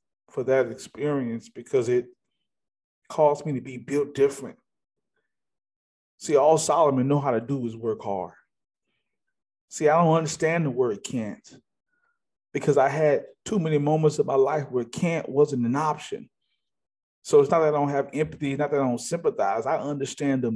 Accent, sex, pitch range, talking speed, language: American, male, 135-175 Hz, 170 wpm, English